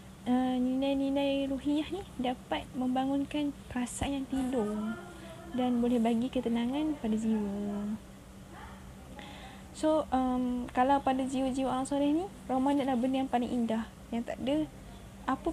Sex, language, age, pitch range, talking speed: female, Malay, 10-29, 230-265 Hz, 130 wpm